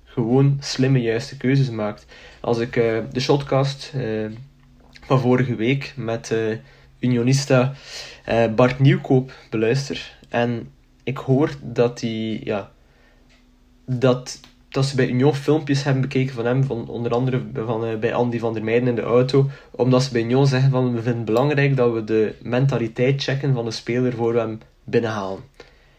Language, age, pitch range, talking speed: Dutch, 20-39, 115-130 Hz, 165 wpm